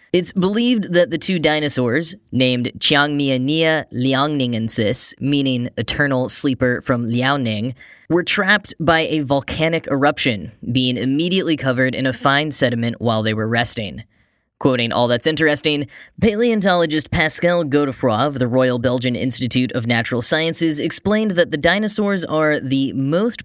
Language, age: English, 10-29